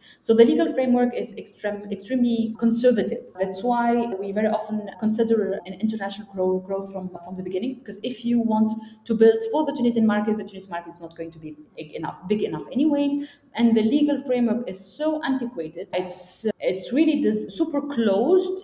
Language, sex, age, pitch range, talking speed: English, female, 20-39, 195-245 Hz, 185 wpm